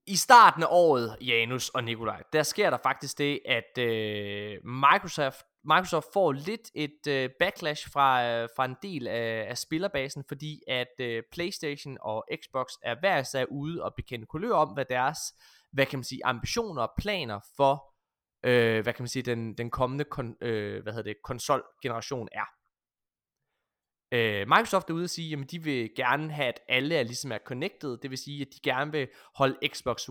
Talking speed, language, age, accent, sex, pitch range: 180 wpm, Danish, 20-39, native, male, 120-155 Hz